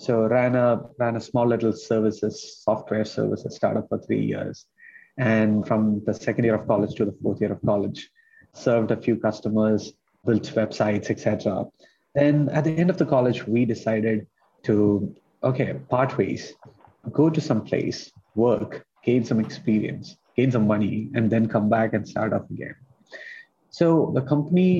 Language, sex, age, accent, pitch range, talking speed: English, male, 30-49, Indian, 105-125 Hz, 170 wpm